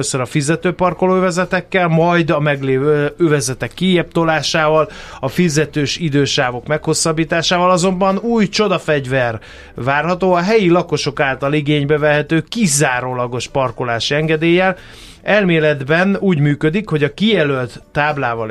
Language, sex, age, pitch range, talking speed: Hungarian, male, 30-49, 130-170 Hz, 110 wpm